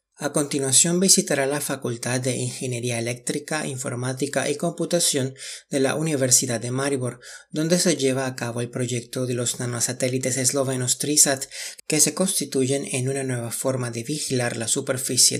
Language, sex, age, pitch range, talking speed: Spanish, male, 30-49, 125-140 Hz, 150 wpm